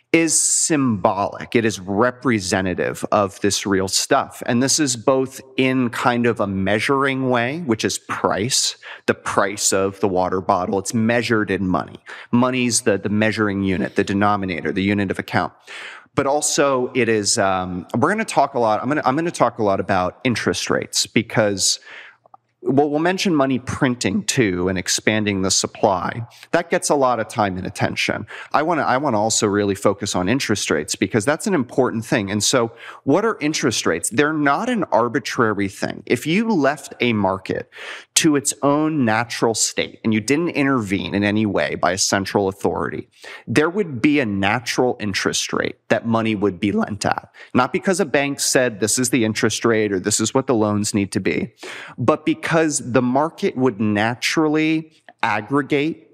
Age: 30-49